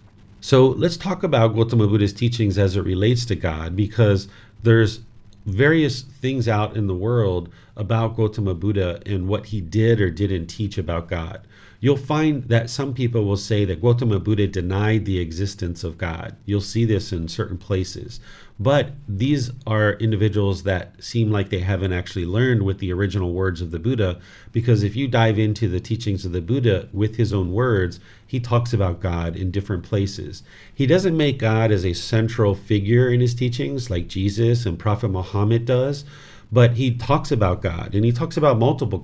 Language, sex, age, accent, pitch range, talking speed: English, male, 40-59, American, 95-120 Hz, 185 wpm